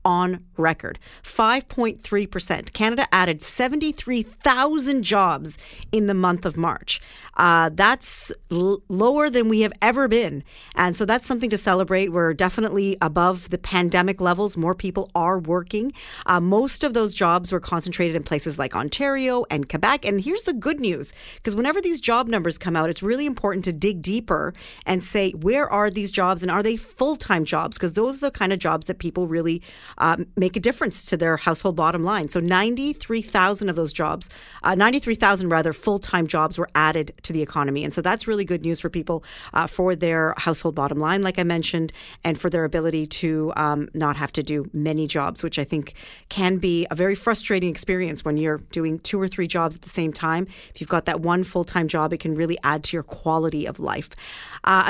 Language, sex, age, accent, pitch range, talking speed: English, female, 40-59, American, 165-215 Hz, 195 wpm